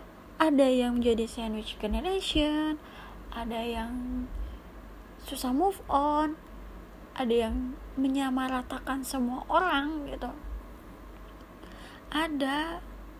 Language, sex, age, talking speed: Indonesian, female, 20-39, 75 wpm